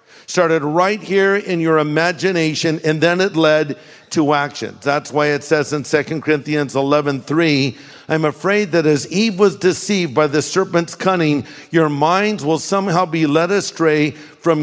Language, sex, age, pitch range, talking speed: English, male, 50-69, 150-190 Hz, 165 wpm